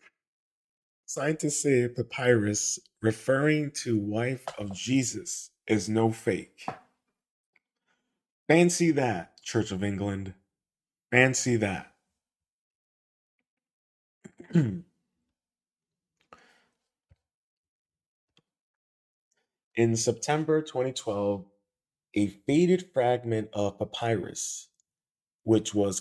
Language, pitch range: English, 100-125 Hz